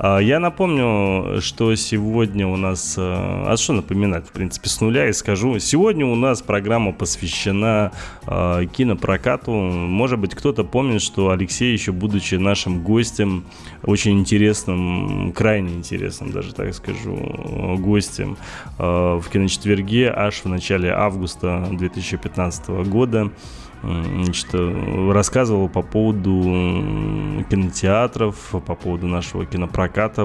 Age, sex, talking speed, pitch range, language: 20-39, male, 110 wpm, 90-110 Hz, Russian